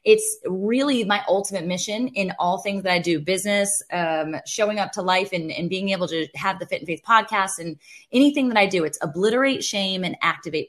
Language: English